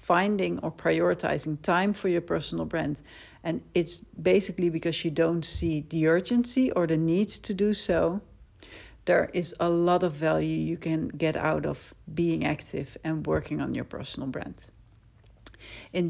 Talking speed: 160 wpm